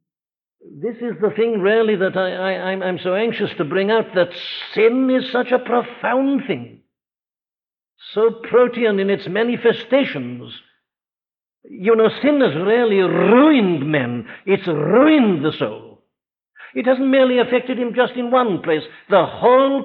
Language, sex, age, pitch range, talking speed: English, male, 60-79, 165-235 Hz, 150 wpm